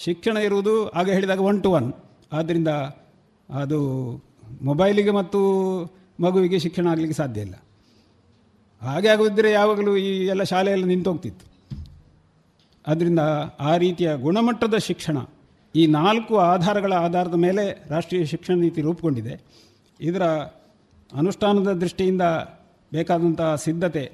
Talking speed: 105 wpm